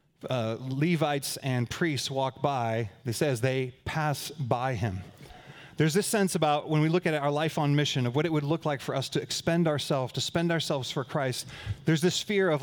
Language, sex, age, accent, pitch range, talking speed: English, male, 30-49, American, 140-175 Hz, 210 wpm